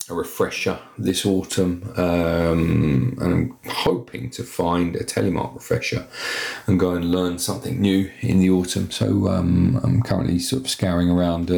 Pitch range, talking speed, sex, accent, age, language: 85-110 Hz, 155 wpm, male, British, 30-49, English